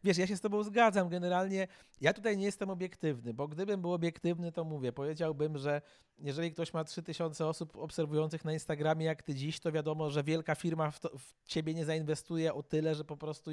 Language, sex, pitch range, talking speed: Polish, male, 145-165 Hz, 210 wpm